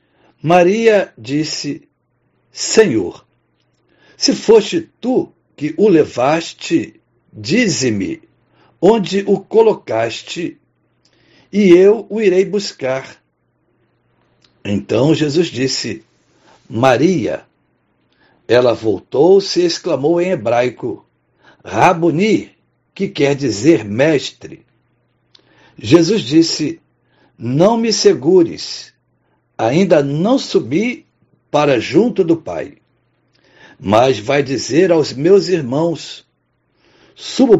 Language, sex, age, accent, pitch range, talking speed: Portuguese, male, 60-79, Brazilian, 150-230 Hz, 85 wpm